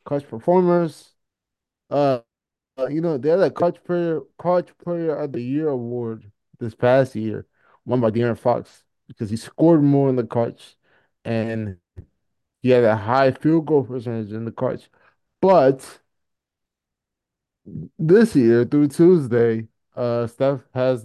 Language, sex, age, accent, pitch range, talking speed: English, male, 20-39, American, 115-135 Hz, 140 wpm